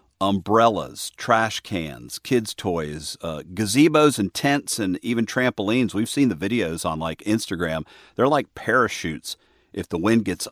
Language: English